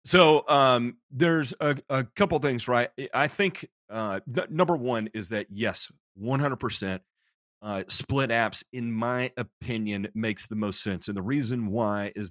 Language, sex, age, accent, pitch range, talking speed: English, male, 30-49, American, 100-125 Hz, 160 wpm